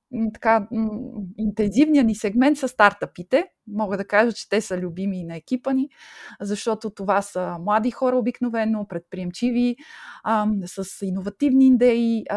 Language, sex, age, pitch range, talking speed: Bulgarian, female, 20-39, 190-240 Hz, 125 wpm